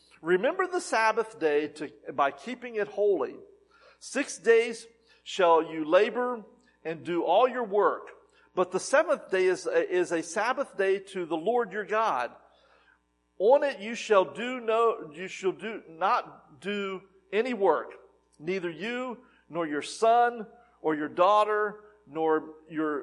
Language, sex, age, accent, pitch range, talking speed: English, male, 50-69, American, 140-215 Hz, 150 wpm